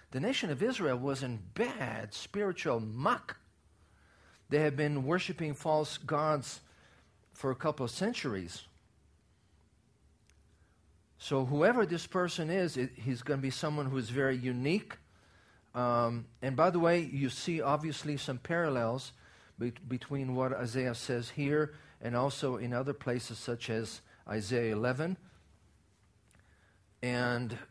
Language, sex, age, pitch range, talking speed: English, male, 50-69, 110-150 Hz, 130 wpm